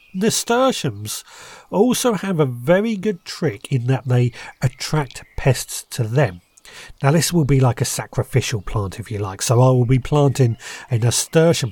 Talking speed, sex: 165 wpm, male